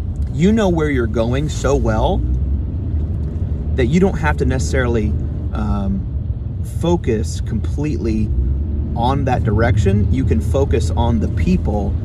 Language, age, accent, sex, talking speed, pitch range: English, 30-49, American, male, 125 wpm, 70-110 Hz